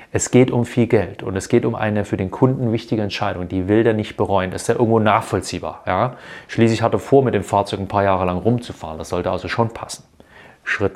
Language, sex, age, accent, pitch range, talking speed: German, male, 30-49, German, 105-135 Hz, 240 wpm